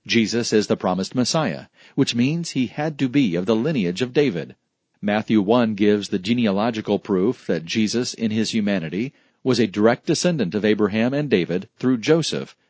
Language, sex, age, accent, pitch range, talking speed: English, male, 40-59, American, 105-130 Hz, 175 wpm